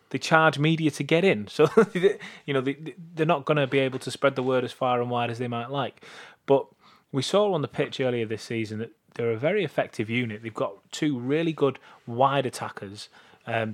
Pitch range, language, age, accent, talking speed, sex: 120-140 Hz, English, 20-39, British, 220 wpm, male